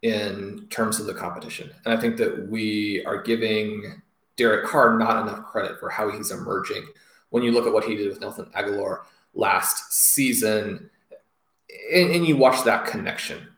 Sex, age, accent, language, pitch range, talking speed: male, 30-49, American, English, 110-140 Hz, 170 wpm